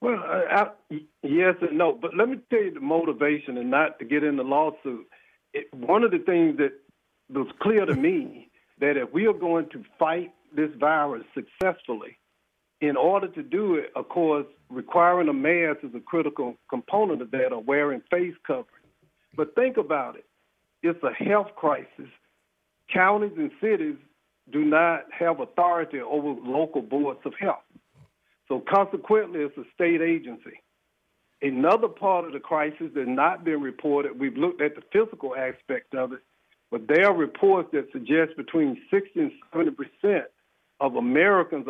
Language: English